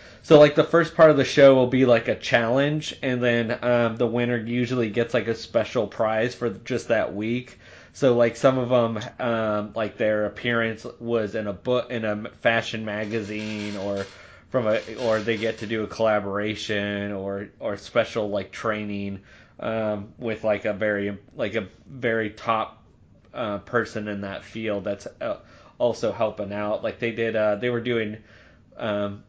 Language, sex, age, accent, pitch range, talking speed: English, male, 20-39, American, 105-120 Hz, 175 wpm